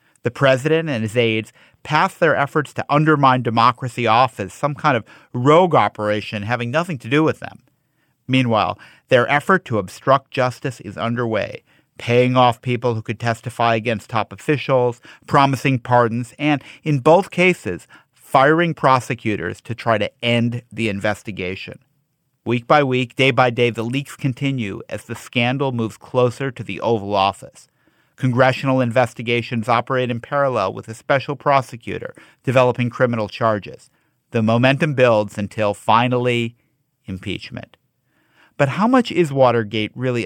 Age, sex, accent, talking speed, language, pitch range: 50-69, male, American, 145 wpm, English, 115-140 Hz